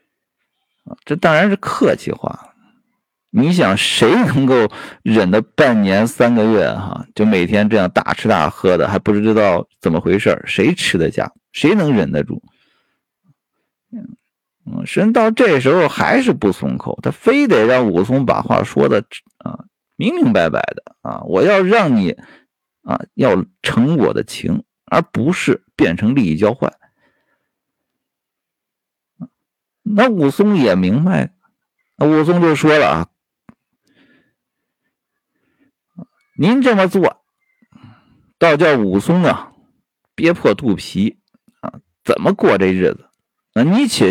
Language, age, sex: Chinese, 50-69, male